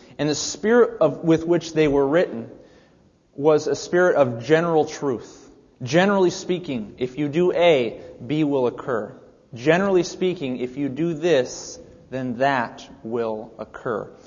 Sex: male